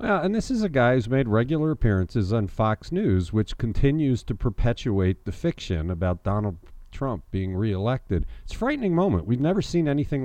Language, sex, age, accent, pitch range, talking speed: English, male, 50-69, American, 95-145 Hz, 185 wpm